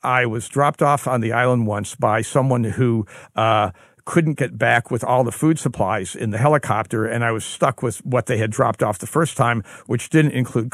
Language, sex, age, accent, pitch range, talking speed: English, male, 60-79, American, 110-135 Hz, 220 wpm